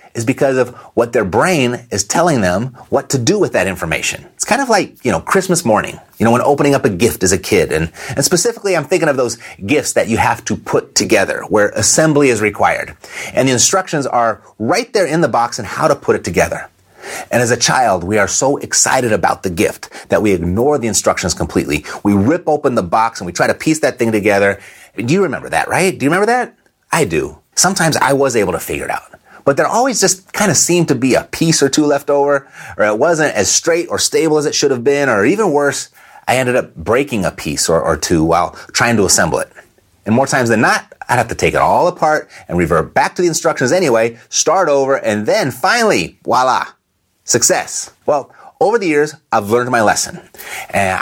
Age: 30-49